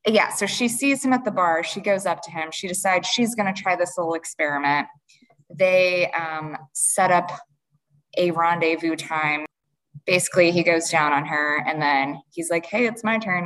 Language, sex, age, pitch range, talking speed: English, female, 20-39, 165-215 Hz, 190 wpm